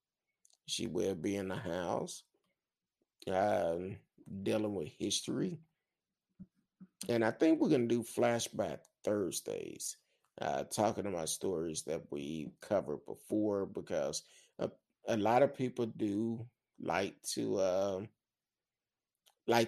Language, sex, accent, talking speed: English, male, American, 105 wpm